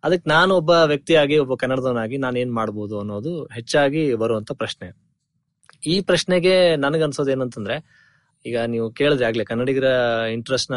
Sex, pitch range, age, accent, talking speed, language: male, 115-150 Hz, 20-39, native, 130 wpm, Kannada